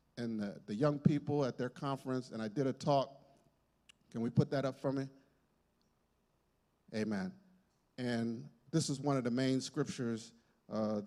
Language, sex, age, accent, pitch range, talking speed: English, male, 50-69, American, 130-180 Hz, 165 wpm